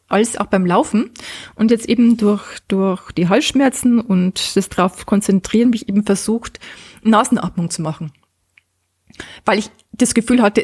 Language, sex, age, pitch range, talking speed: German, female, 20-39, 190-230 Hz, 145 wpm